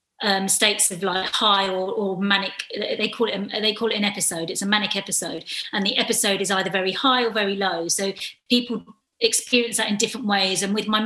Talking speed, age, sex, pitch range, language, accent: 225 wpm, 30-49, female, 200-235 Hz, English, British